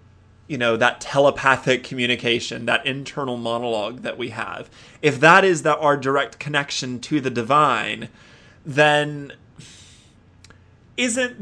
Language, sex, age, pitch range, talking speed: English, male, 20-39, 120-155 Hz, 120 wpm